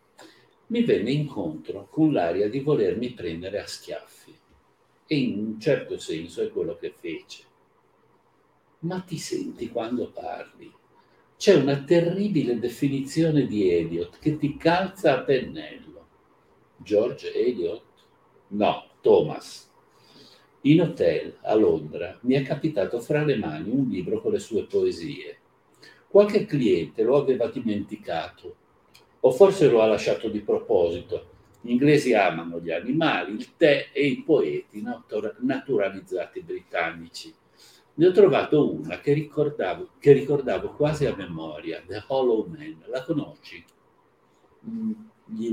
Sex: male